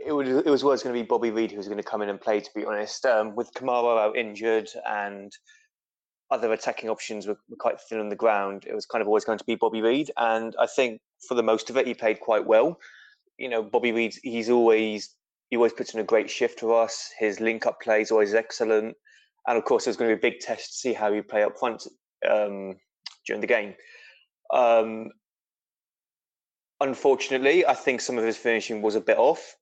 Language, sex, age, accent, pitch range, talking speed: English, male, 20-39, British, 105-125 Hz, 225 wpm